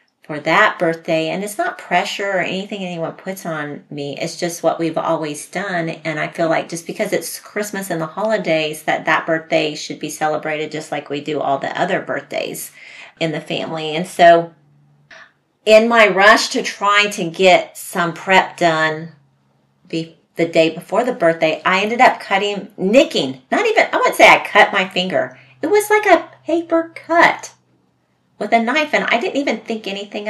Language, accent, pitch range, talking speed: English, American, 160-225 Hz, 180 wpm